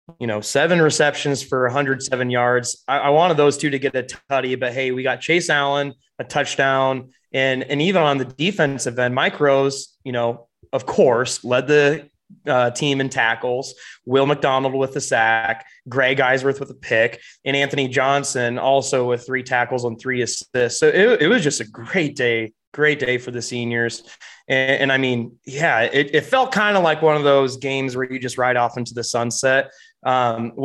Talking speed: 195 wpm